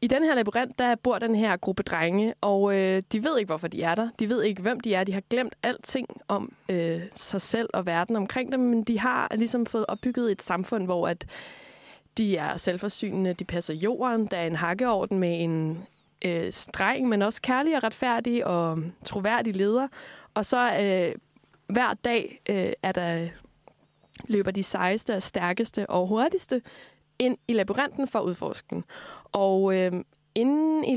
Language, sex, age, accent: Danish, female, 20-39, native